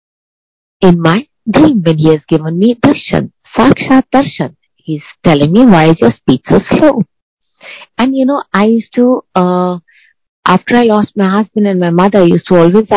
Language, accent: Hindi, native